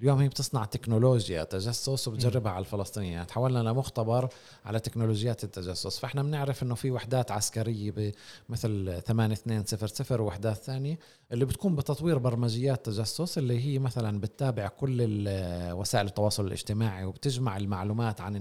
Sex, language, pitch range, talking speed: male, Arabic, 110-140 Hz, 125 wpm